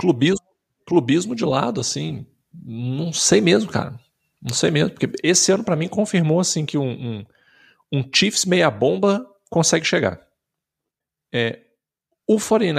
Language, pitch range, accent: Portuguese, 125-185 Hz, Brazilian